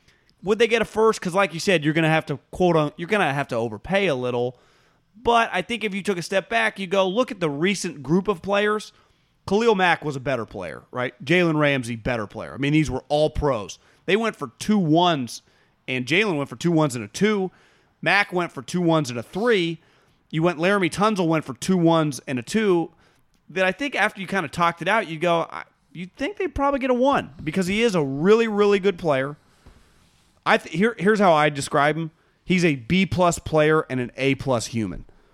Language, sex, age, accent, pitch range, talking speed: English, male, 30-49, American, 140-190 Hz, 225 wpm